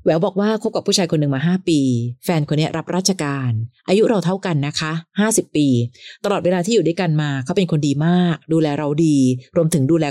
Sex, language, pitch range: female, Thai, 140-185 Hz